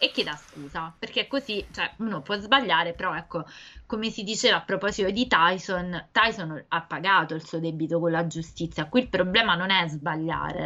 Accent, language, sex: native, Italian, female